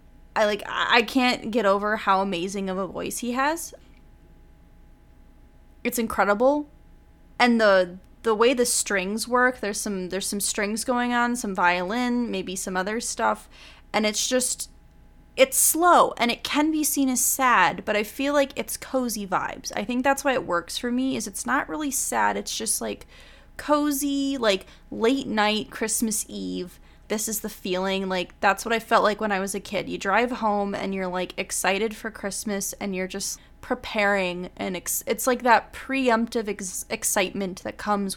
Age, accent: 20-39, American